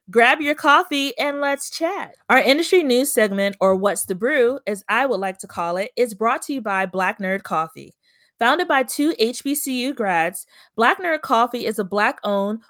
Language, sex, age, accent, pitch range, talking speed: English, female, 30-49, American, 200-275 Hz, 190 wpm